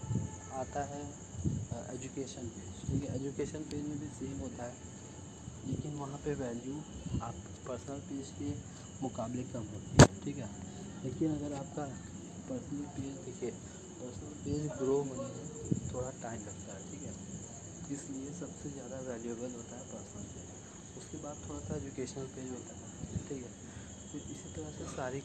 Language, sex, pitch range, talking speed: Hindi, male, 100-135 Hz, 160 wpm